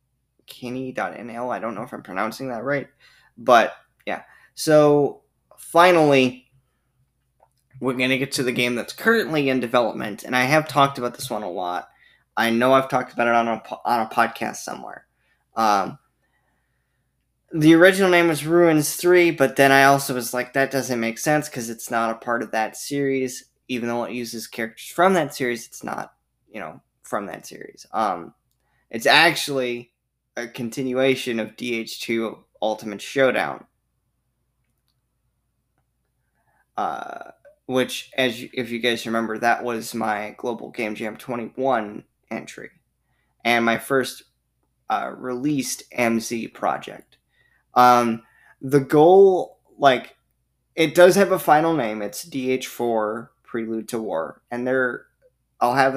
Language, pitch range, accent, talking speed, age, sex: English, 120-140 Hz, American, 145 wpm, 10-29, male